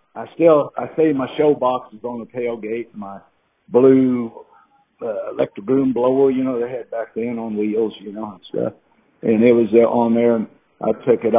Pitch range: 115-145 Hz